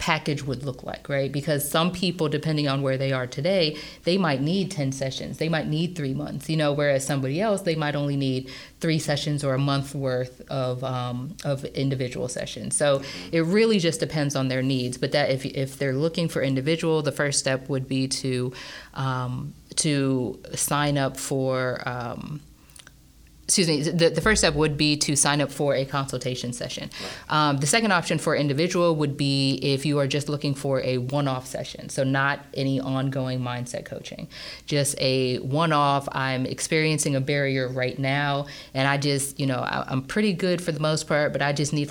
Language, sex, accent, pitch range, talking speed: English, female, American, 135-155 Hz, 195 wpm